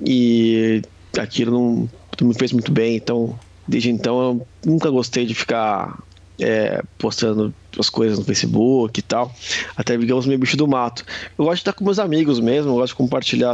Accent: Brazilian